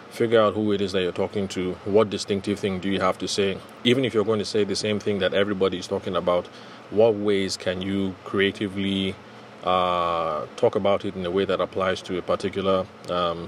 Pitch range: 95-105 Hz